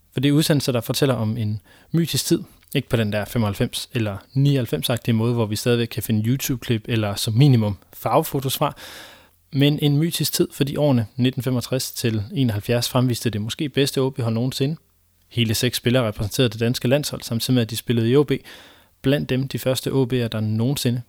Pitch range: 115-135 Hz